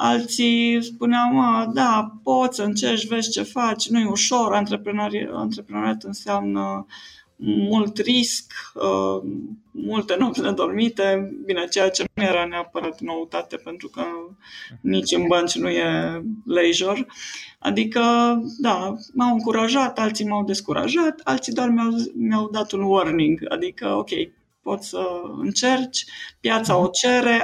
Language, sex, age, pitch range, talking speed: Romanian, female, 20-39, 185-235 Hz, 120 wpm